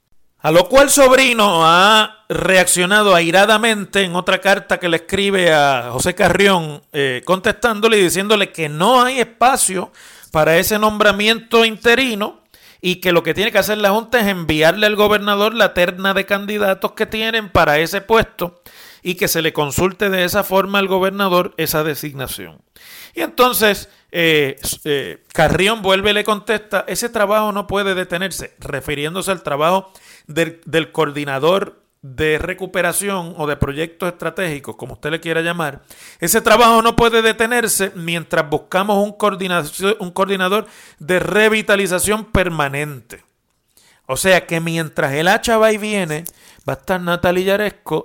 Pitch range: 160-210 Hz